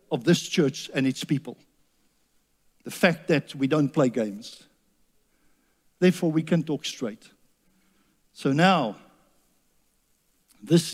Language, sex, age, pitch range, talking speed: English, male, 60-79, 135-185 Hz, 115 wpm